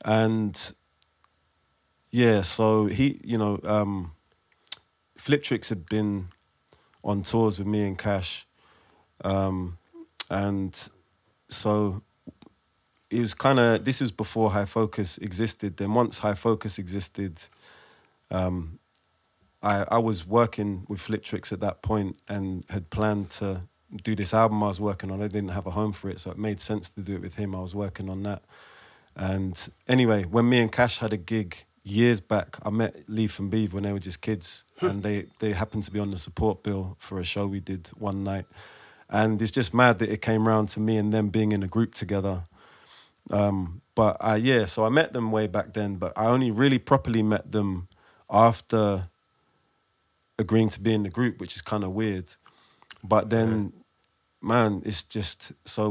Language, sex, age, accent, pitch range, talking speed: English, male, 30-49, British, 95-110 Hz, 180 wpm